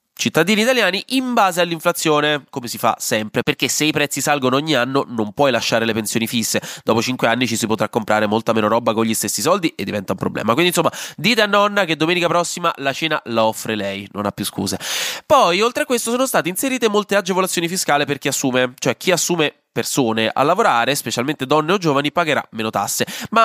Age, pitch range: 20-39, 115-170 Hz